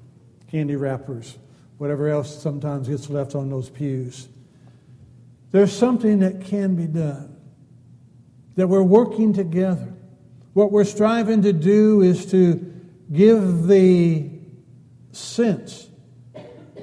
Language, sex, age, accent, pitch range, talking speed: English, male, 60-79, American, 130-185 Hz, 105 wpm